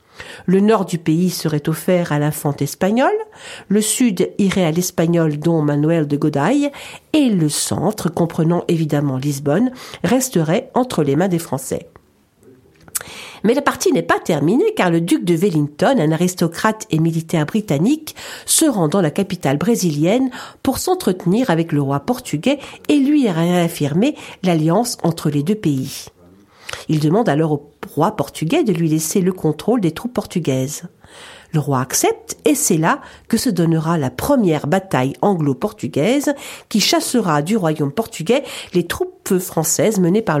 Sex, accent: female, French